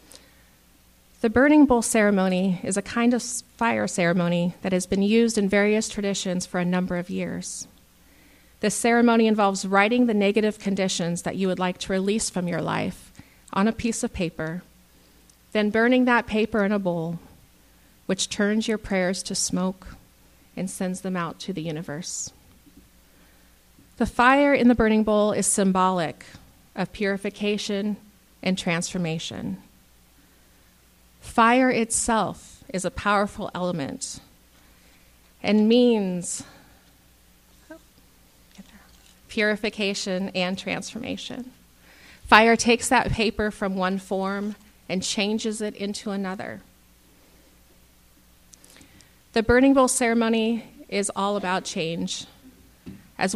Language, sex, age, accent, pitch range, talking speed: English, female, 40-59, American, 175-215 Hz, 120 wpm